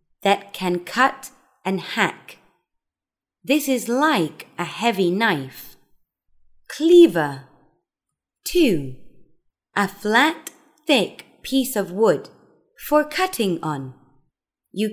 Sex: female